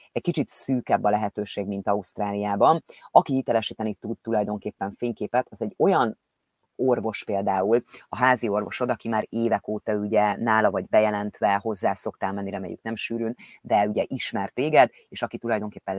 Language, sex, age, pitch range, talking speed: Hungarian, female, 30-49, 100-120 Hz, 150 wpm